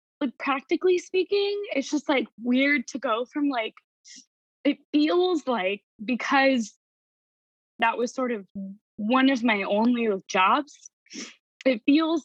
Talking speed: 125 wpm